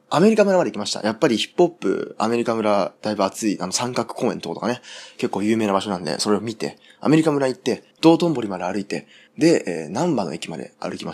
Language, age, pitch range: Japanese, 20-39, 105-170 Hz